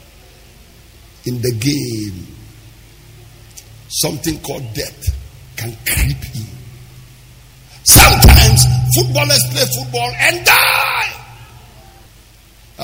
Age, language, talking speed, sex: 50-69, English, 70 wpm, male